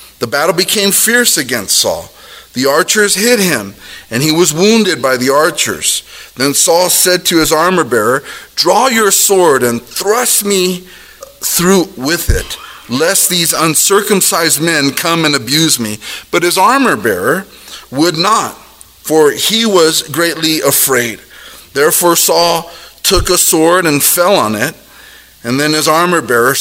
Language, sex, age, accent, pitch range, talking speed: English, male, 40-59, American, 140-185 Hz, 150 wpm